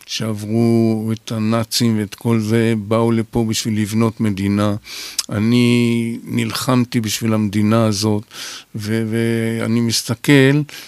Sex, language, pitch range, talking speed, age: male, Hebrew, 110-125 Hz, 105 wpm, 50-69